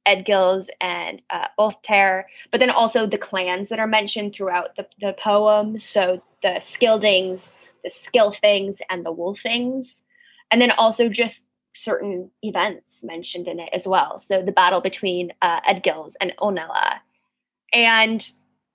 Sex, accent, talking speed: female, American, 140 wpm